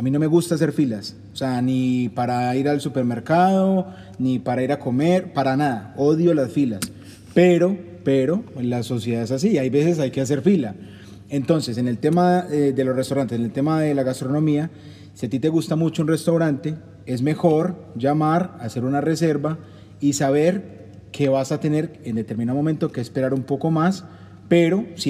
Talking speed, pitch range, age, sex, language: 190 wpm, 125-155 Hz, 30-49, male, Spanish